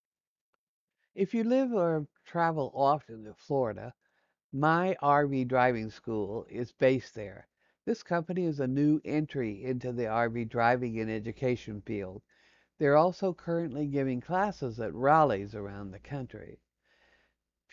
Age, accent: 60-79, American